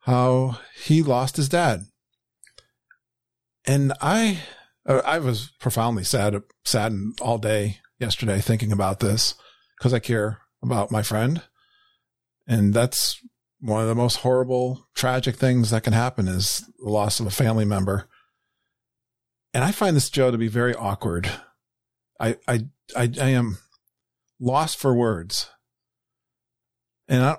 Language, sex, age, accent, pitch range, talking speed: English, male, 50-69, American, 110-135 Hz, 130 wpm